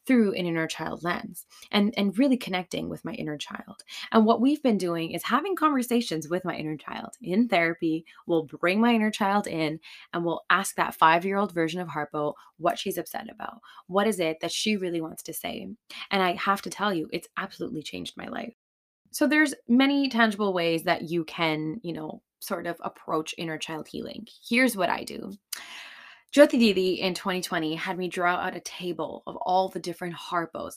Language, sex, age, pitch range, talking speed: English, female, 20-39, 165-205 Hz, 195 wpm